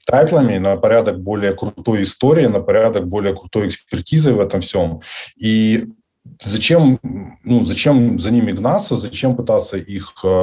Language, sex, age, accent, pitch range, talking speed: Ukrainian, male, 20-39, native, 95-125 Hz, 145 wpm